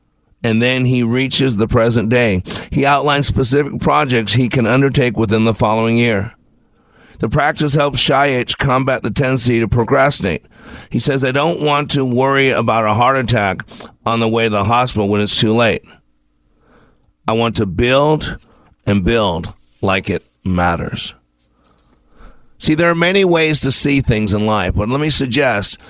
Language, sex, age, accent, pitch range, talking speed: English, male, 50-69, American, 110-140 Hz, 165 wpm